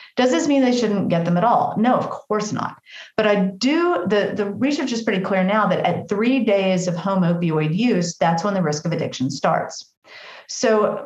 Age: 40-59